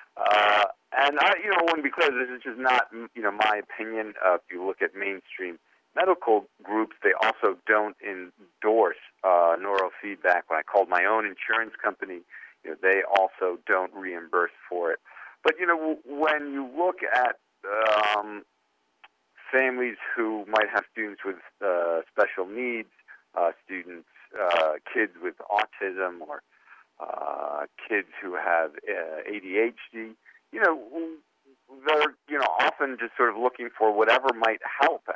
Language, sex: English, male